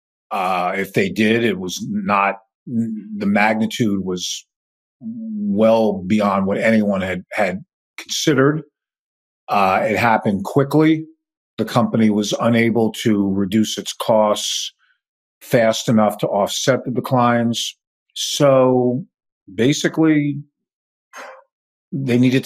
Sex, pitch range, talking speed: male, 105-130 Hz, 105 wpm